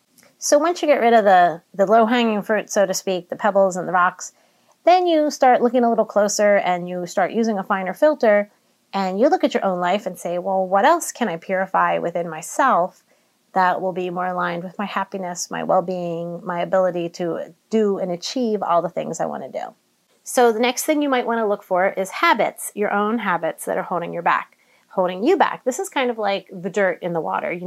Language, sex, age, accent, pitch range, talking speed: English, female, 30-49, American, 175-220 Hz, 230 wpm